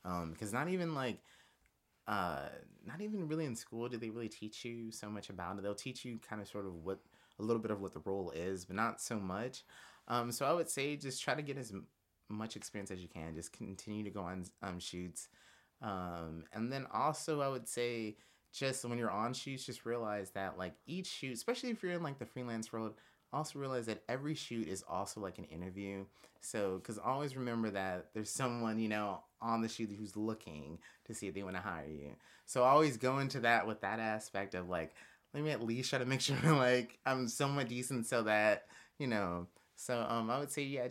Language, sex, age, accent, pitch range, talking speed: English, male, 30-49, American, 100-125 Hz, 225 wpm